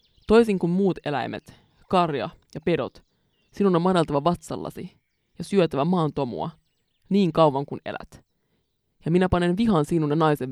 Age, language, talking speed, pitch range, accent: 20-39, English, 145 wpm, 145-175 Hz, Finnish